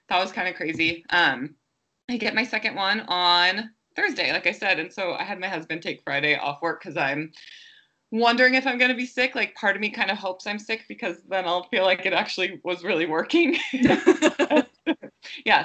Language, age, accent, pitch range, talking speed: English, 20-39, American, 155-200 Hz, 210 wpm